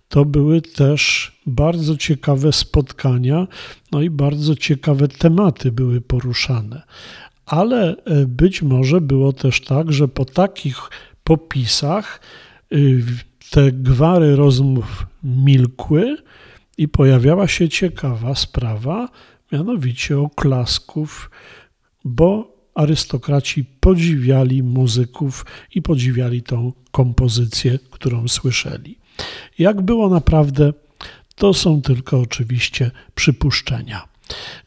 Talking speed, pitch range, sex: 90 wpm, 125-160 Hz, male